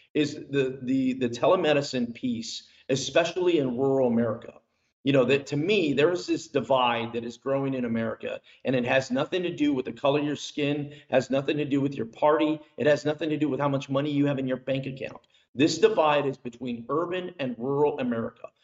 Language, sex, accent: English, male, American